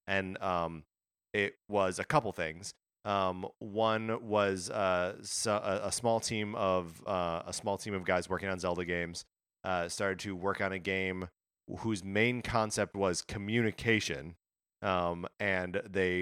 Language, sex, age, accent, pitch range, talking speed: English, male, 30-49, American, 90-115 Hz, 150 wpm